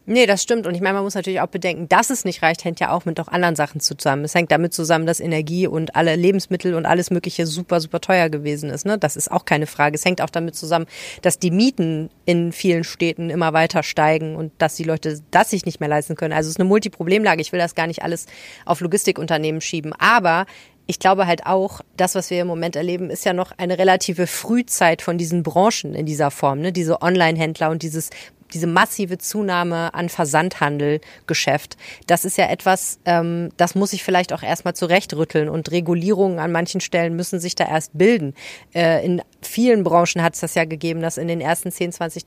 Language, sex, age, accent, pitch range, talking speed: German, female, 30-49, German, 165-185 Hz, 215 wpm